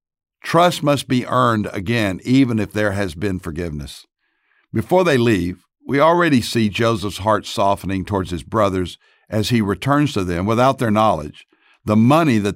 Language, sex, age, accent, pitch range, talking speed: English, male, 60-79, American, 100-125 Hz, 160 wpm